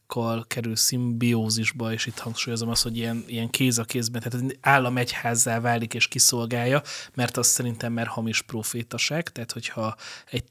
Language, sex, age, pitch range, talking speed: Hungarian, male, 30-49, 115-130 Hz, 150 wpm